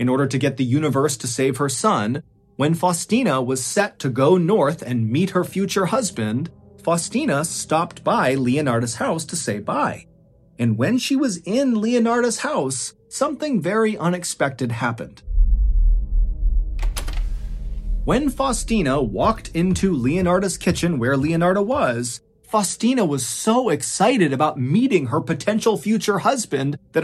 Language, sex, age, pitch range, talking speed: English, male, 30-49, 120-195 Hz, 135 wpm